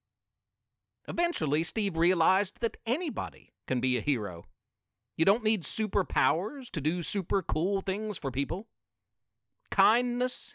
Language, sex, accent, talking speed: English, male, American, 120 wpm